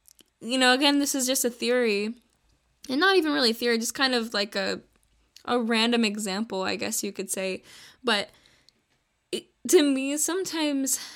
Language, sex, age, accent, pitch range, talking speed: English, female, 10-29, American, 220-255 Hz, 170 wpm